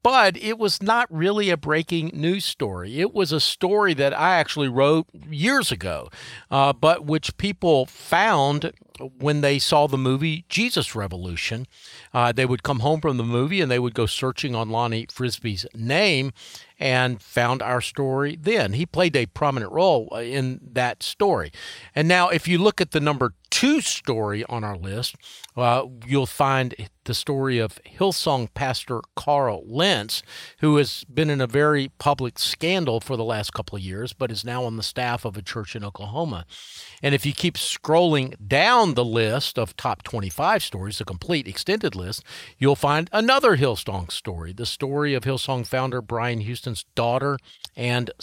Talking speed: 175 wpm